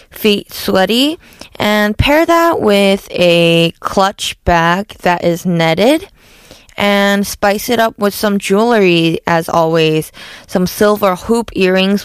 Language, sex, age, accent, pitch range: Korean, female, 20-39, American, 170-205 Hz